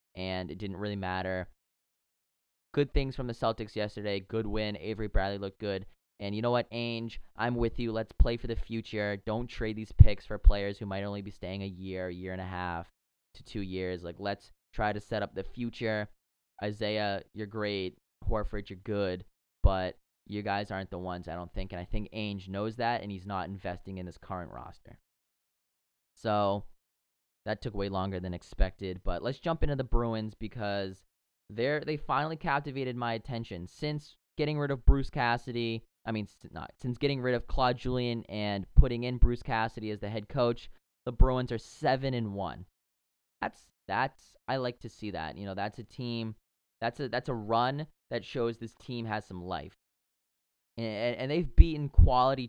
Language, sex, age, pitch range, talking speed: English, male, 20-39, 95-120 Hz, 190 wpm